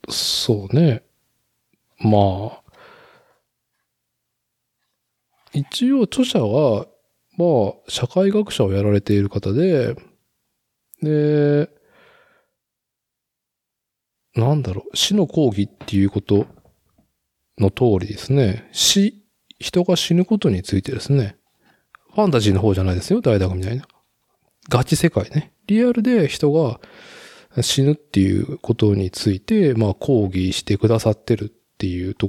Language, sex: Japanese, male